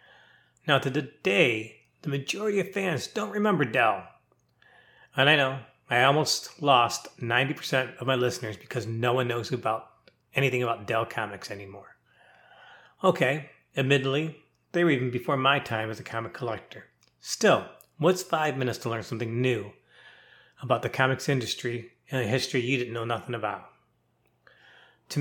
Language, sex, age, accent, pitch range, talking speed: English, male, 30-49, American, 120-150 Hz, 150 wpm